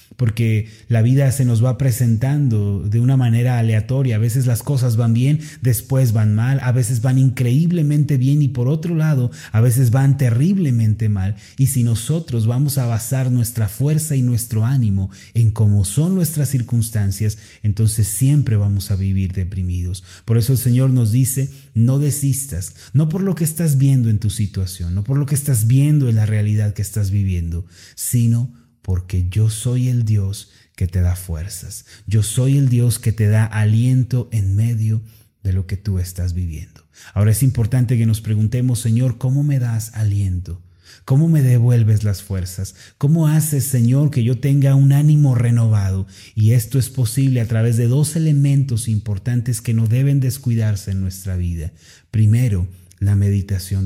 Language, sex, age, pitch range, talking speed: Spanish, male, 30-49, 100-130 Hz, 175 wpm